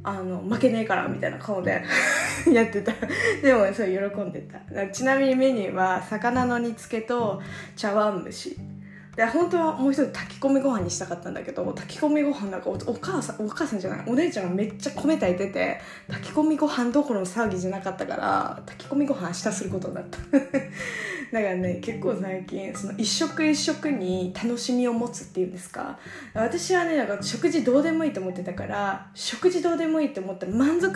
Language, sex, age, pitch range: Japanese, female, 20-39, 190-285 Hz